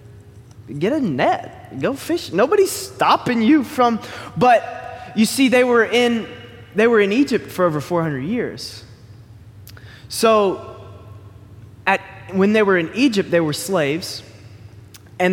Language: English